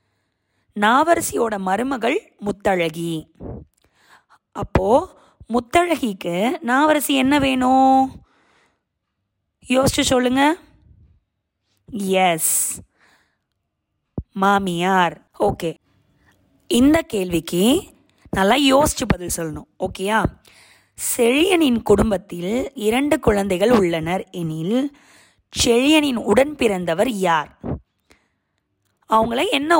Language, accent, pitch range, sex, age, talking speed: Tamil, native, 175-255 Hz, female, 20-39, 65 wpm